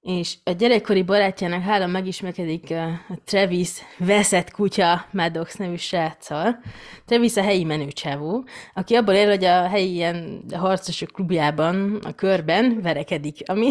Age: 20-39